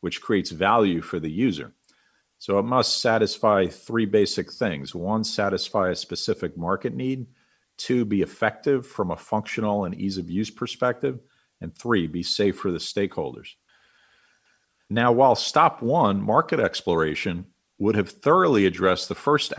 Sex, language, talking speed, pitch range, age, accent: male, English, 150 wpm, 95-115 Hz, 50-69, American